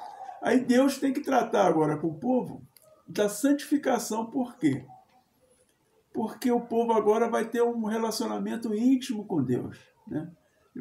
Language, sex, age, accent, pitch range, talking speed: Portuguese, male, 60-79, Brazilian, 175-240 Hz, 140 wpm